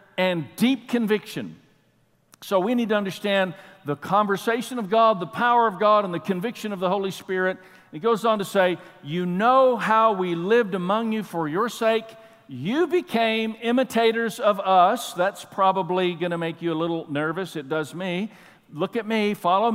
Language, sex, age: English, male, 50-69